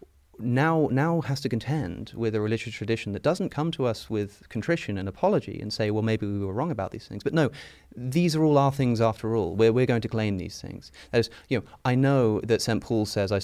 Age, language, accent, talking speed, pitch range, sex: 30-49, English, British, 245 wpm, 100-125 Hz, male